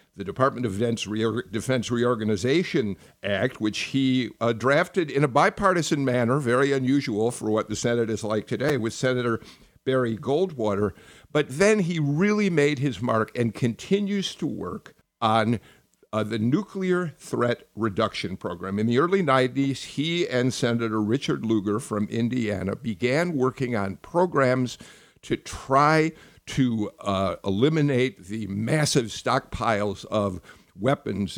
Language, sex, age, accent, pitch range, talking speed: English, male, 50-69, American, 105-135 Hz, 135 wpm